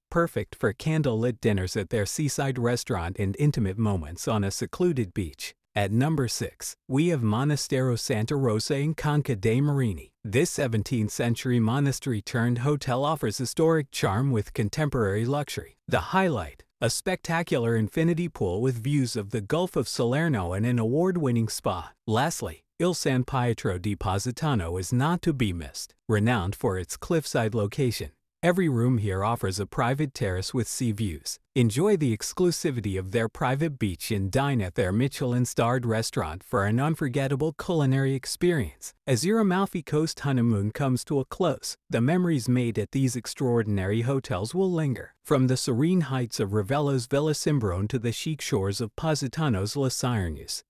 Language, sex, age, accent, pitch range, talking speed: English, male, 40-59, American, 110-145 Hz, 155 wpm